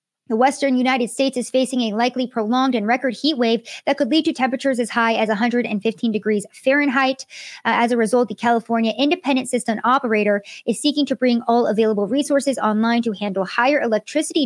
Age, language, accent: 20-39, English, American